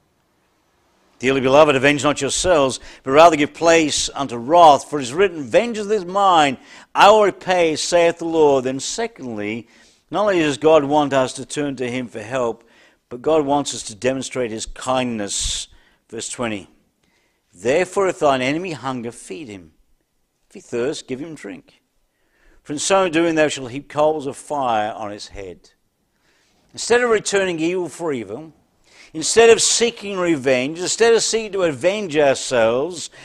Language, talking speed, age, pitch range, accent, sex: English, 160 wpm, 60-79, 135-200 Hz, British, male